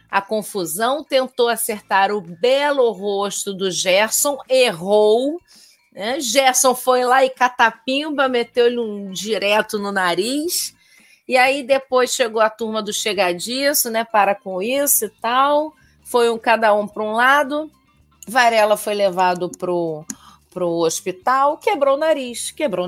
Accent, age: Brazilian, 40-59